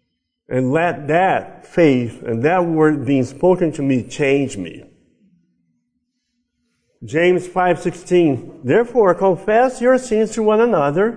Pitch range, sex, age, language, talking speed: 145-225 Hz, male, 50-69, English, 120 wpm